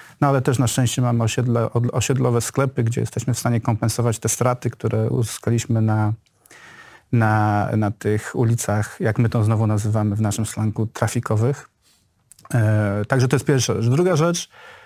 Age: 40-59